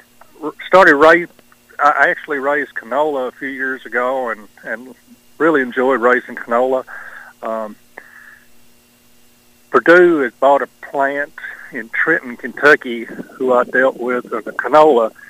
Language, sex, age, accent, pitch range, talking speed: English, male, 50-69, American, 120-145 Hz, 120 wpm